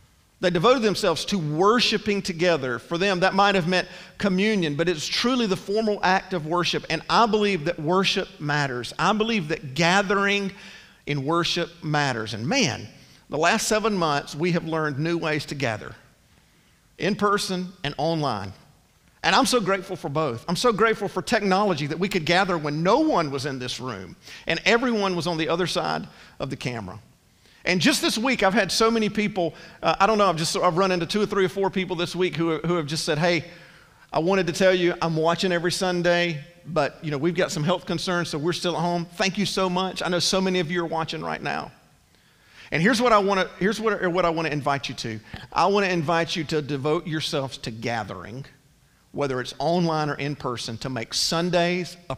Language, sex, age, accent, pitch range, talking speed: English, male, 50-69, American, 155-195 Hz, 215 wpm